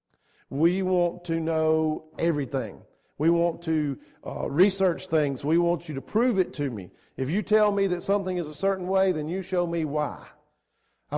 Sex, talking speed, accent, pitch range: male, 190 wpm, American, 155-195 Hz